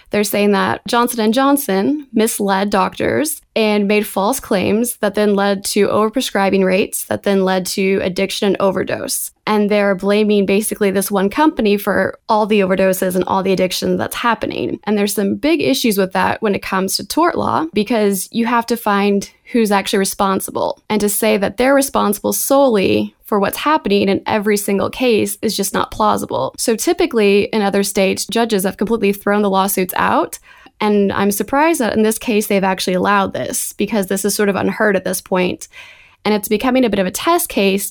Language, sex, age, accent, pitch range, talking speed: English, female, 20-39, American, 195-225 Hz, 190 wpm